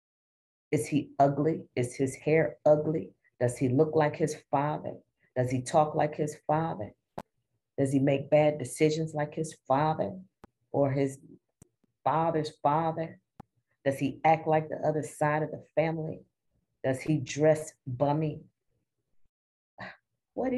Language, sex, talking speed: English, female, 135 wpm